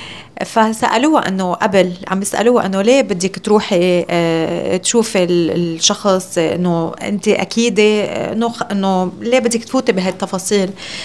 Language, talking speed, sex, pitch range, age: Arabic, 110 wpm, female, 180-225 Hz, 30-49